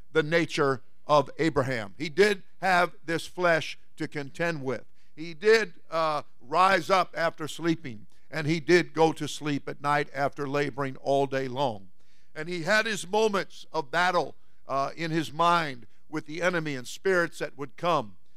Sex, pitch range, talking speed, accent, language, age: male, 150-190 Hz, 165 wpm, American, English, 50-69